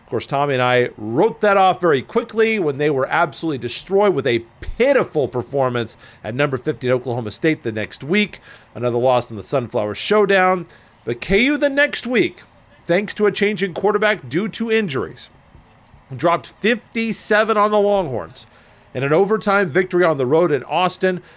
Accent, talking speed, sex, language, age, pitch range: American, 175 wpm, male, English, 40-59, 130-195 Hz